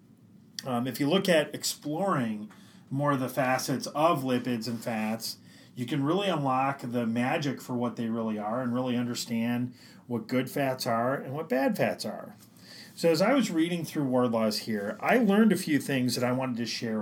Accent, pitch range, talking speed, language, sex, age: American, 120-145 Hz, 200 wpm, English, male, 30-49